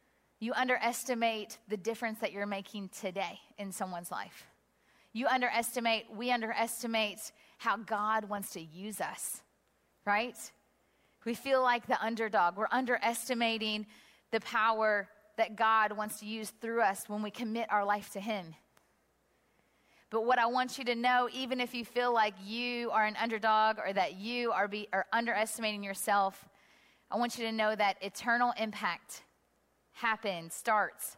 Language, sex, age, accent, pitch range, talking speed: English, female, 30-49, American, 205-235 Hz, 150 wpm